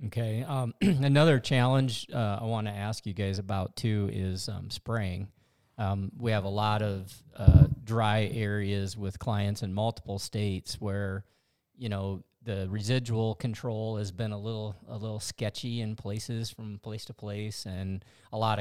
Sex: male